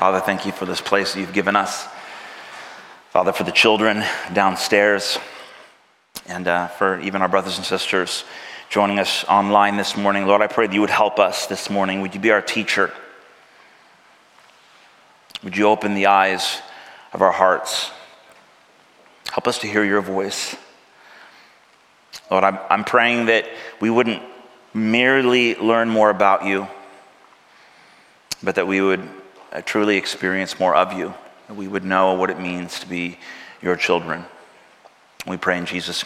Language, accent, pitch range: English, American, 95-110 Hz